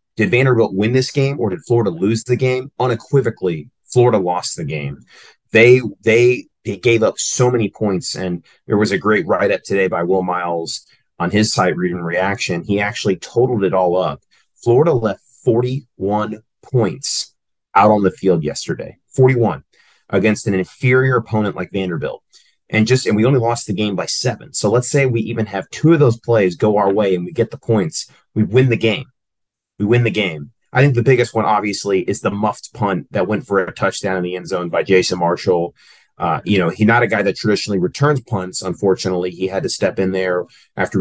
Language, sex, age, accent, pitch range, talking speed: English, male, 30-49, American, 95-120 Hz, 200 wpm